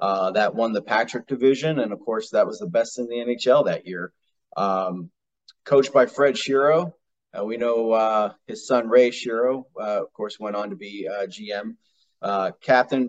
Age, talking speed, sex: 30-49, 190 wpm, male